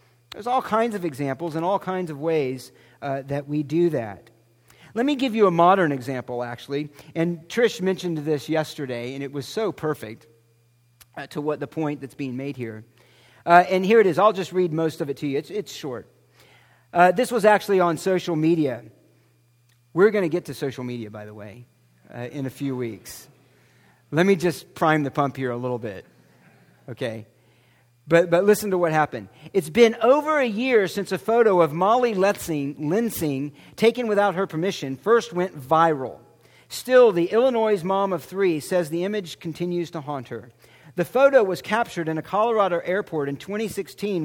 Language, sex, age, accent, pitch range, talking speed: English, male, 40-59, American, 135-195 Hz, 190 wpm